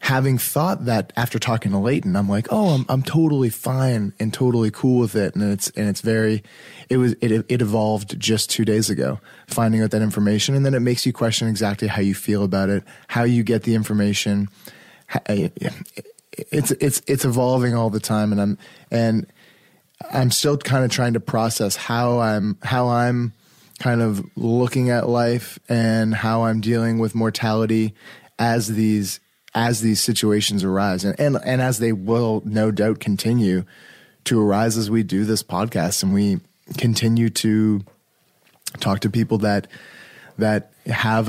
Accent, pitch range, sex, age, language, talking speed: American, 105-125 Hz, male, 20-39, English, 170 wpm